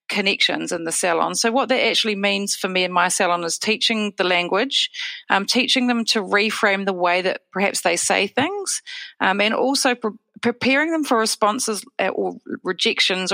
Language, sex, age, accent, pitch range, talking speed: English, female, 40-59, Australian, 185-235 Hz, 175 wpm